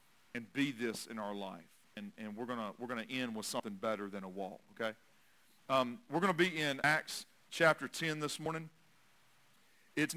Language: English